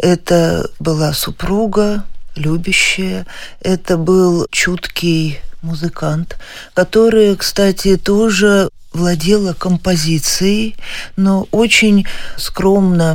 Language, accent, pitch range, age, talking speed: Russian, native, 165-195 Hz, 40-59, 75 wpm